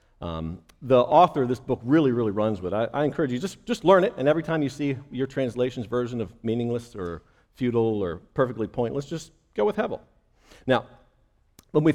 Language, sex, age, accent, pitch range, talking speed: English, male, 50-69, American, 115-165 Hz, 200 wpm